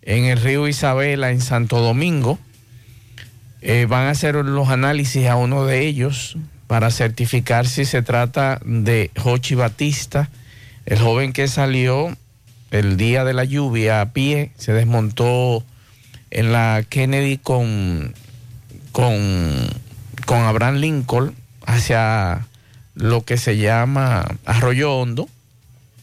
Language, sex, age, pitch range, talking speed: Spanish, male, 50-69, 115-135 Hz, 120 wpm